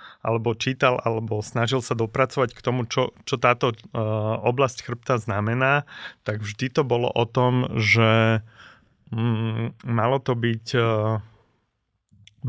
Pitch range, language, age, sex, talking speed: 110-130 Hz, Slovak, 30-49, male, 130 wpm